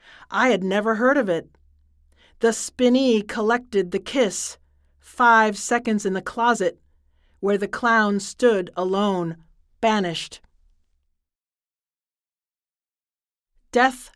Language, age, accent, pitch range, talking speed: English, 40-59, American, 160-245 Hz, 100 wpm